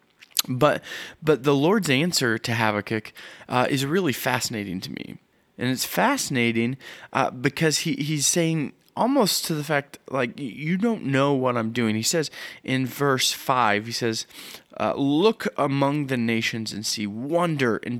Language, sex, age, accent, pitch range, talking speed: English, male, 20-39, American, 115-145 Hz, 160 wpm